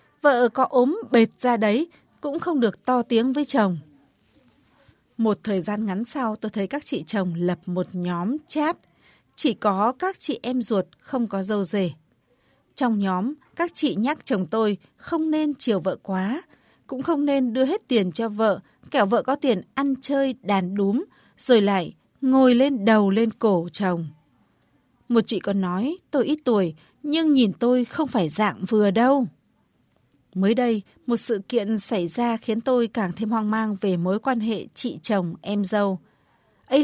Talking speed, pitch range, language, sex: 180 wpm, 200-270 Hz, Vietnamese, female